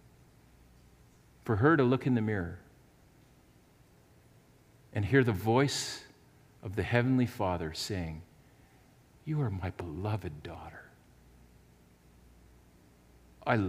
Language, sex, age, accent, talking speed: English, male, 50-69, American, 95 wpm